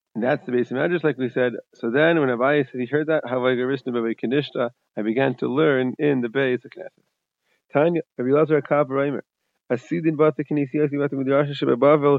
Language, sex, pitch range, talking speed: English, male, 130-150 Hz, 180 wpm